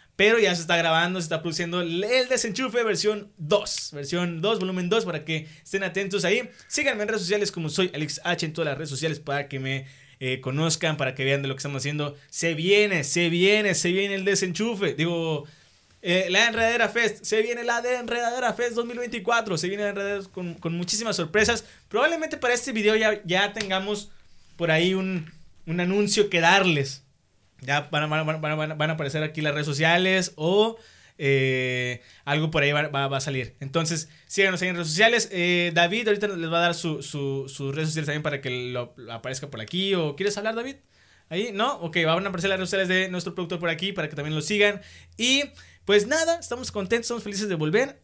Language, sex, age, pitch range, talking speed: Spanish, male, 20-39, 150-205 Hz, 205 wpm